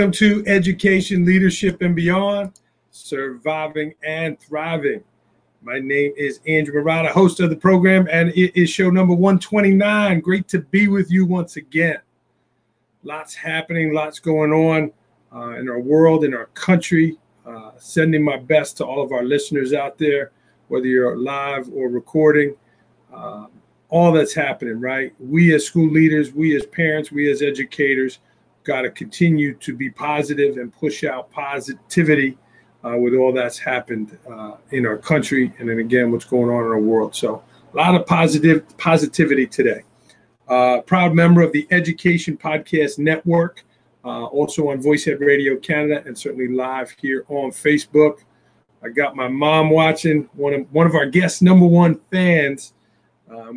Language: English